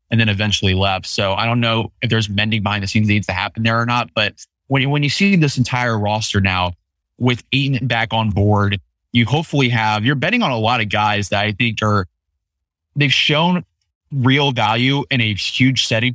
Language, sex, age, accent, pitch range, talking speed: English, male, 20-39, American, 100-120 Hz, 215 wpm